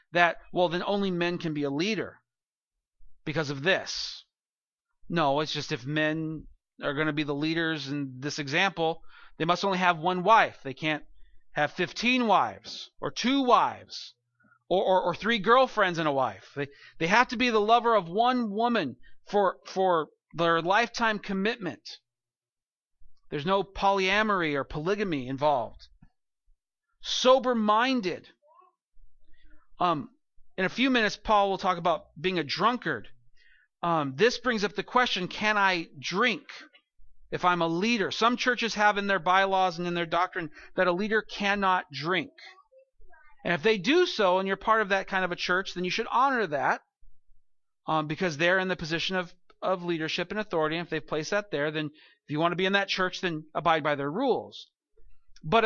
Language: English